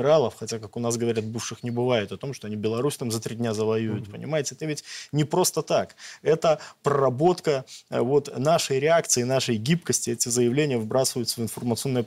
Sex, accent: male, native